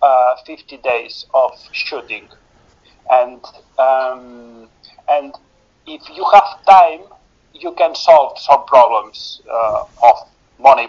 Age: 40-59